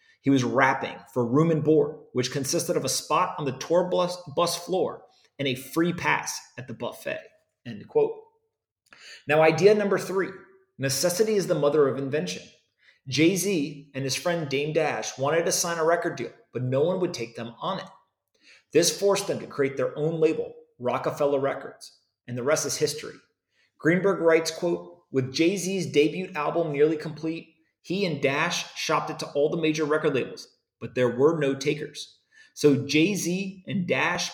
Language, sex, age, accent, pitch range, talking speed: English, male, 30-49, American, 140-180 Hz, 175 wpm